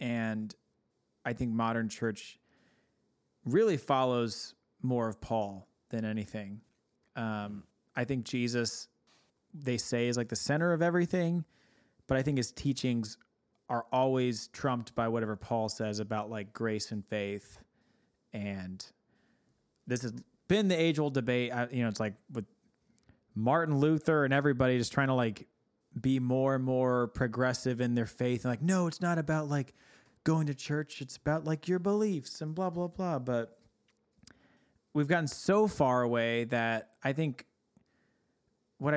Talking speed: 150 wpm